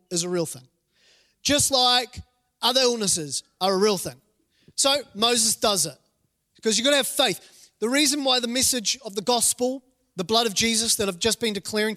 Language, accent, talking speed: English, Australian, 195 wpm